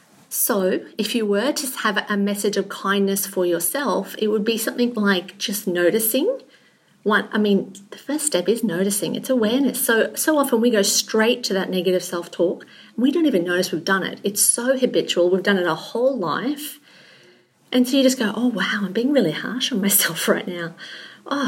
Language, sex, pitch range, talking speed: English, female, 185-230 Hz, 200 wpm